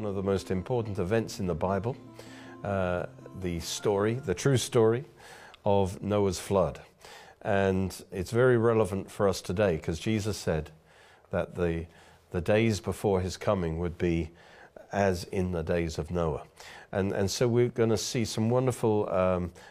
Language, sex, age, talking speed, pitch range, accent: English, male, 50-69, 160 wpm, 90-110 Hz, British